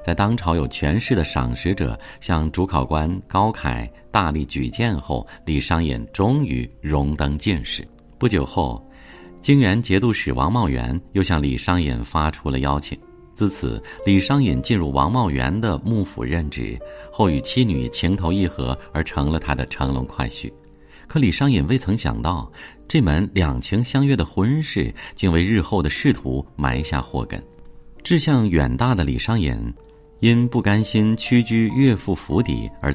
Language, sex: Chinese, male